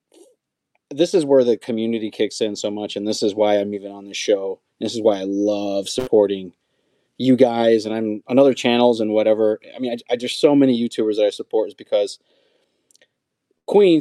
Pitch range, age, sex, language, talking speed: 105-135 Hz, 30-49, male, English, 200 wpm